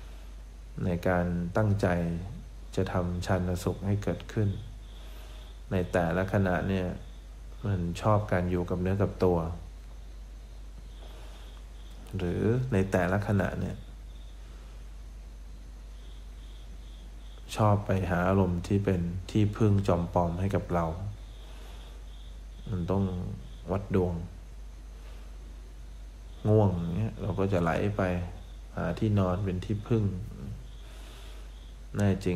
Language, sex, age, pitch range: English, male, 20-39, 65-95 Hz